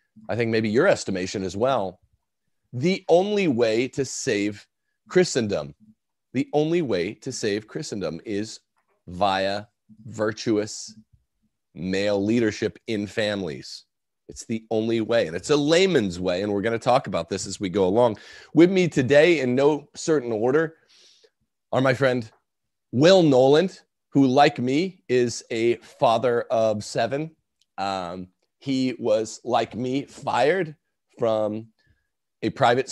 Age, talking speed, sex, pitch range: 40-59, 135 wpm, male, 105-135 Hz